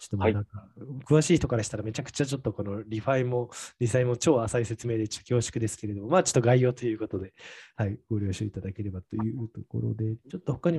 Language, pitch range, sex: Japanese, 105-145 Hz, male